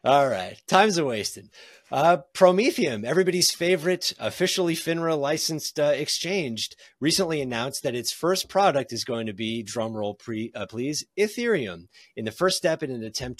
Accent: American